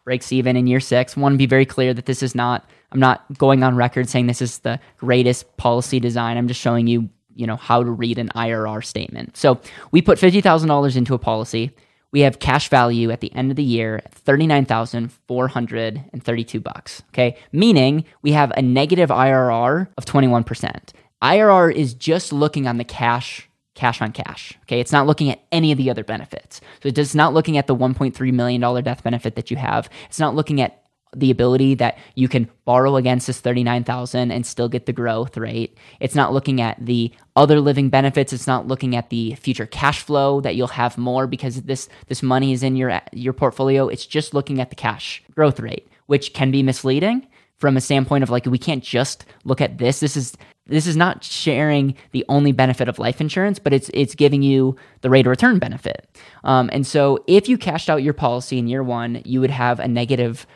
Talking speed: 210 wpm